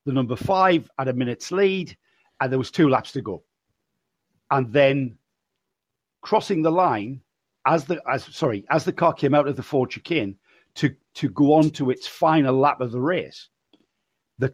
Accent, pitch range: British, 130-155 Hz